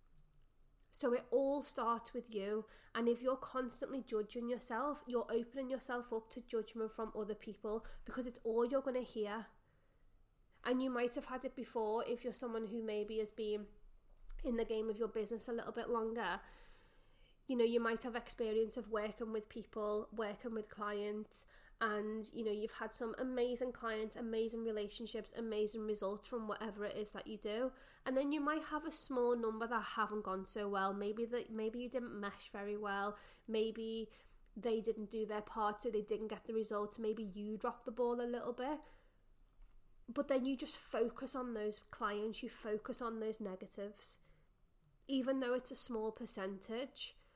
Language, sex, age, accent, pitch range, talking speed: English, female, 20-39, British, 215-245 Hz, 180 wpm